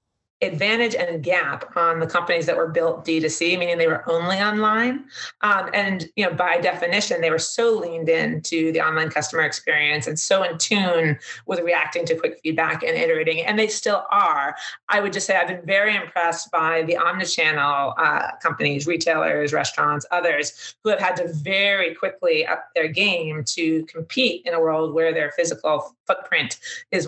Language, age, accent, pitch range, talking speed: English, 30-49, American, 160-205 Hz, 180 wpm